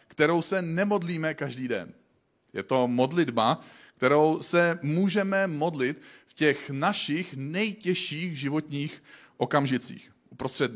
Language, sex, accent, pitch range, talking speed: Czech, male, native, 125-155 Hz, 105 wpm